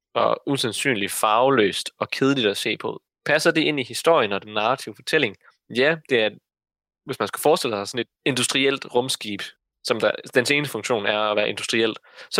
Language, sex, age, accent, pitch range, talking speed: Danish, male, 20-39, native, 110-145 Hz, 190 wpm